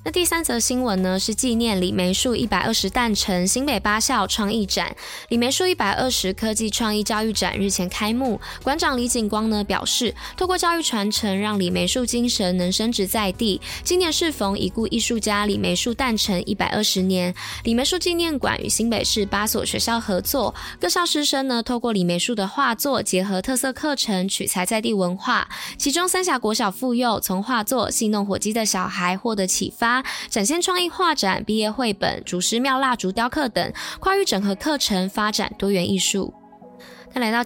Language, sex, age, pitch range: Chinese, female, 10-29, 195-250 Hz